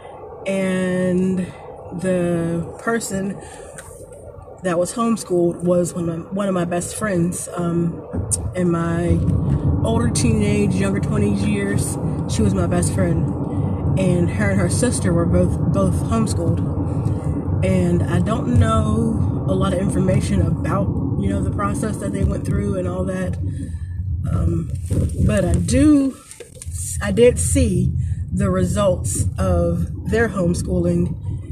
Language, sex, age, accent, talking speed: English, female, 30-49, American, 130 wpm